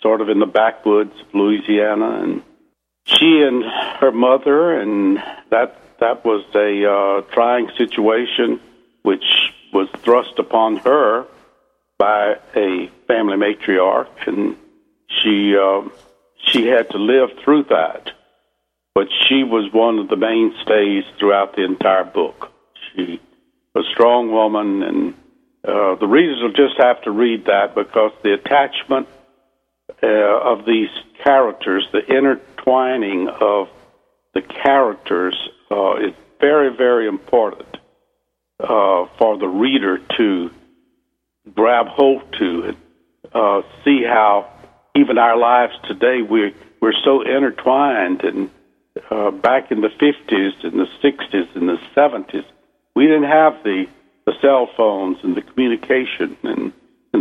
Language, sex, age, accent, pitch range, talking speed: English, male, 60-79, American, 105-140 Hz, 130 wpm